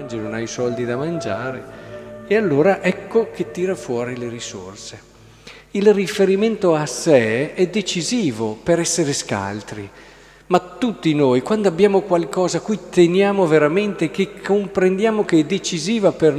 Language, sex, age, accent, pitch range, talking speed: Italian, male, 40-59, native, 145-185 Hz, 145 wpm